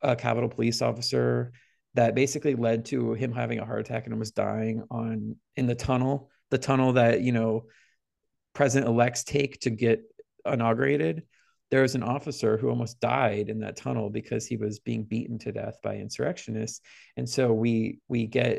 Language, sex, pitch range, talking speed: English, male, 110-130 Hz, 180 wpm